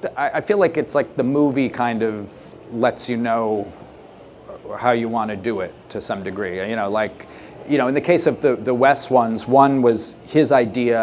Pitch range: 110-130 Hz